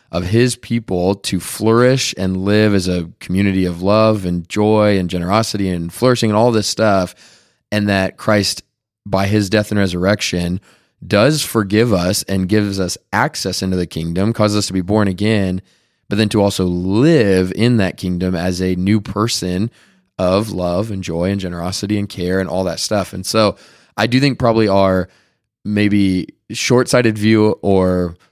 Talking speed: 170 wpm